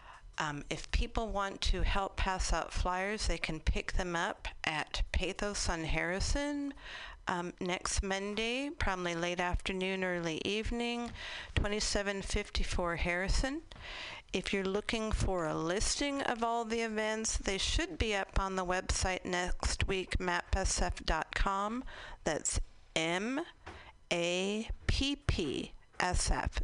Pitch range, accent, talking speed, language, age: 175-220 Hz, American, 115 wpm, English, 50-69